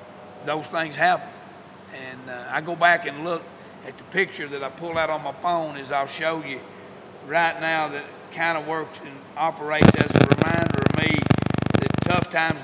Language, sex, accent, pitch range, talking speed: English, male, American, 140-165 Hz, 190 wpm